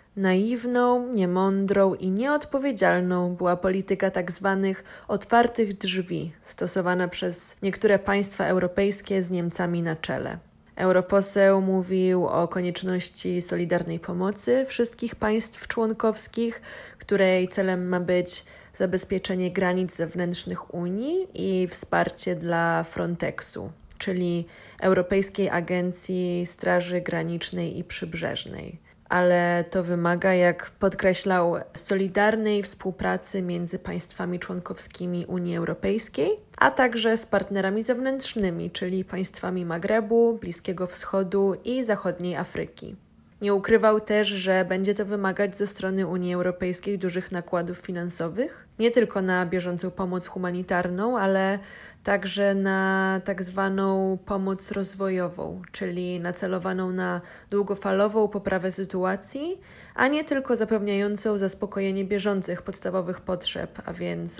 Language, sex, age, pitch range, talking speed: Polish, female, 20-39, 180-200 Hz, 105 wpm